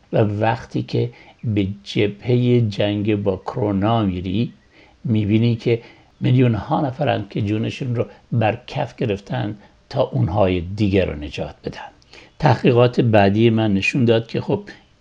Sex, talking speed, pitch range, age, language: male, 130 wpm, 100-120 Hz, 60-79, English